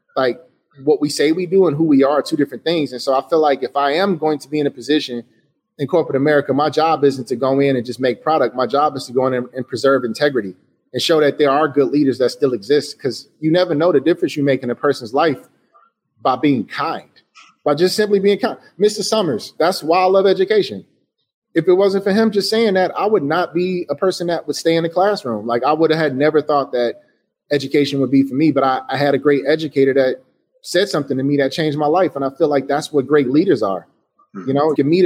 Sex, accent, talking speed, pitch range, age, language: male, American, 255 wpm, 135-160 Hz, 30-49, English